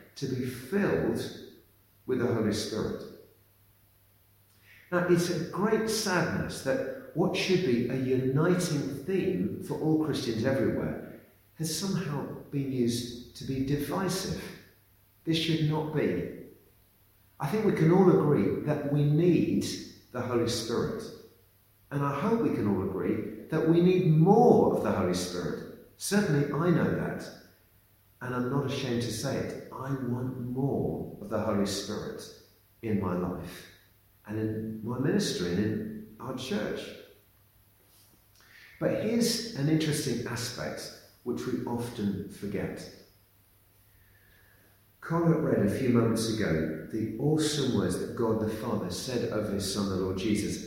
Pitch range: 100-150 Hz